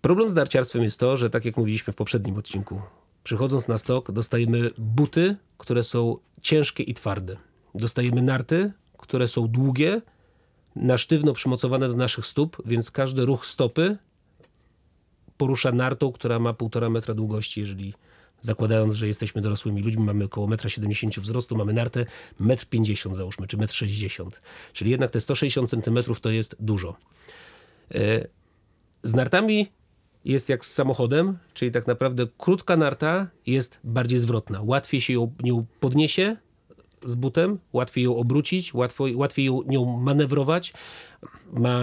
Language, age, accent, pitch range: Polish, 40-59, native, 115-140 Hz